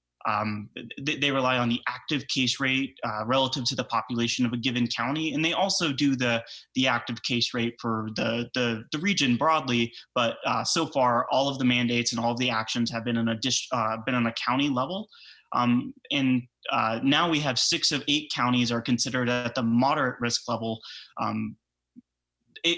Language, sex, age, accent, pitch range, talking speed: English, male, 20-39, American, 115-135 Hz, 195 wpm